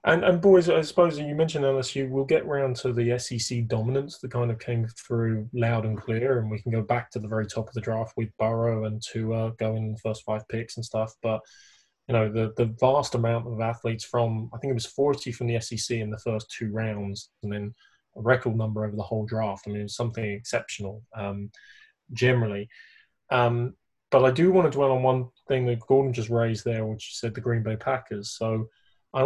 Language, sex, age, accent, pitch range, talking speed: English, male, 20-39, British, 110-130 Hz, 225 wpm